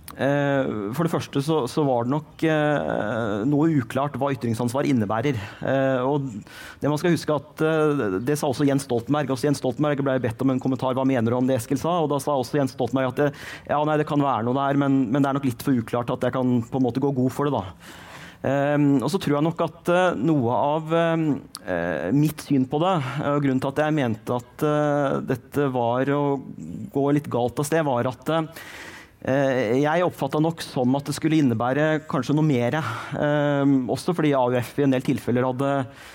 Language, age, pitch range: English, 30-49, 130-150 Hz